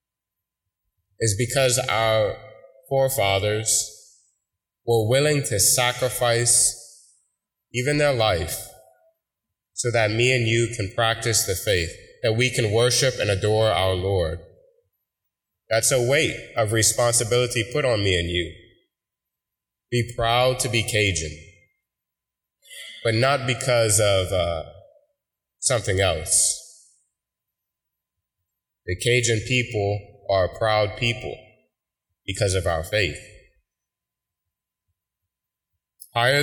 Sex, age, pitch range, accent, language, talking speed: male, 20-39, 100-125 Hz, American, English, 100 wpm